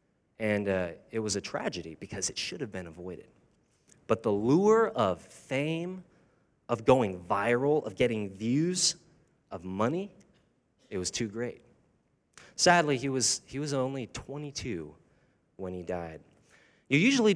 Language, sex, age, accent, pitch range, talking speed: English, male, 30-49, American, 95-155 Hz, 140 wpm